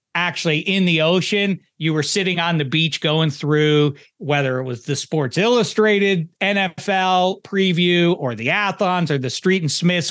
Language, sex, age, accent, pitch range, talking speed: English, male, 40-59, American, 135-170 Hz, 165 wpm